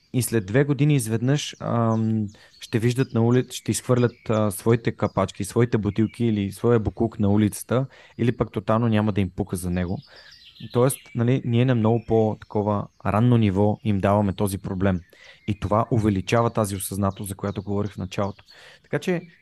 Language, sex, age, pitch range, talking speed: Bulgarian, male, 20-39, 100-125 Hz, 175 wpm